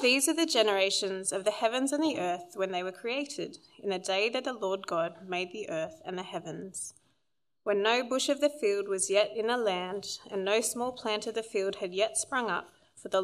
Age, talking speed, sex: 30-49, 230 wpm, female